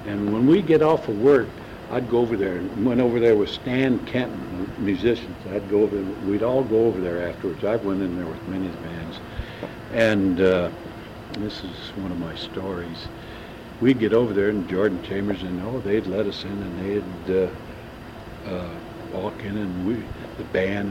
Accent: American